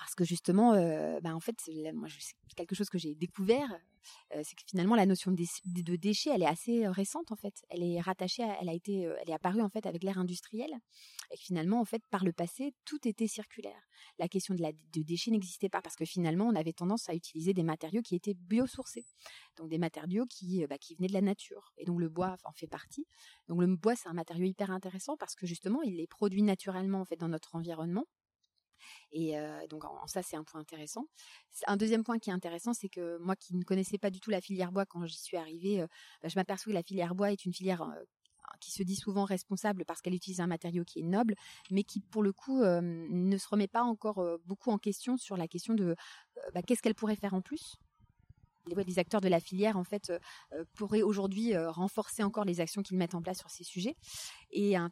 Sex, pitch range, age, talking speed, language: female, 170-210 Hz, 30-49, 225 wpm, French